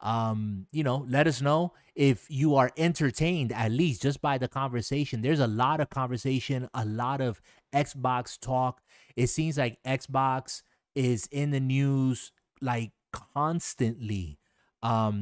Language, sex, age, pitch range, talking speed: English, male, 30-49, 120-145 Hz, 145 wpm